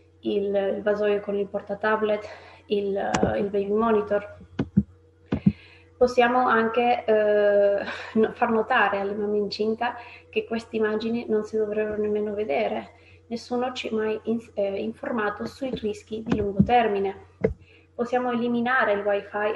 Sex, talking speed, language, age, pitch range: female, 125 wpm, Italian, 20-39, 205-230 Hz